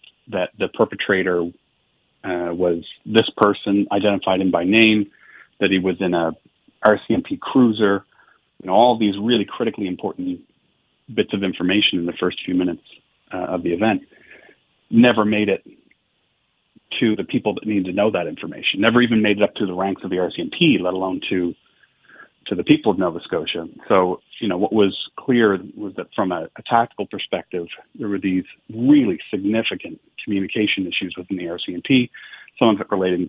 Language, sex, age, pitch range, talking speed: English, male, 30-49, 90-105 Hz, 175 wpm